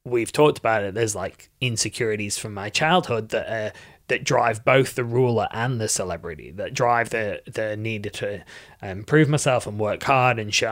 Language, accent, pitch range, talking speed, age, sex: English, British, 105-135 Hz, 185 wpm, 20-39, male